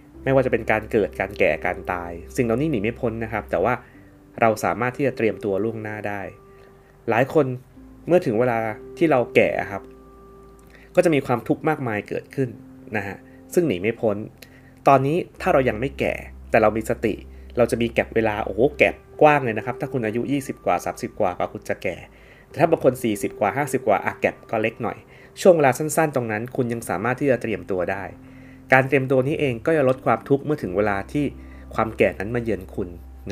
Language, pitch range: Thai, 105-135 Hz